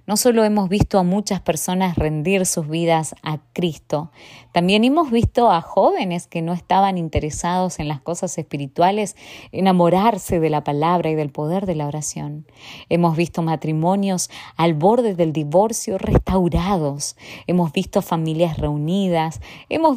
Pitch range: 160-210 Hz